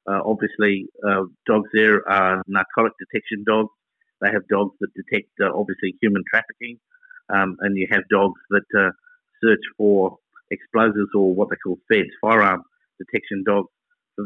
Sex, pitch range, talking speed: male, 100-110 Hz, 155 wpm